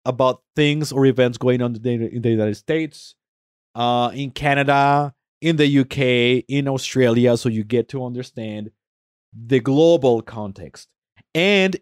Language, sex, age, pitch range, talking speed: English, male, 30-49, 115-150 Hz, 140 wpm